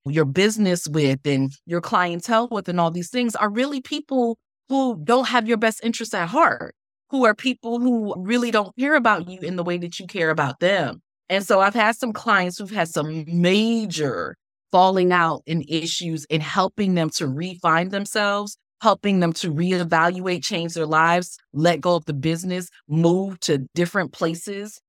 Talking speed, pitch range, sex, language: 180 wpm, 155-195 Hz, female, English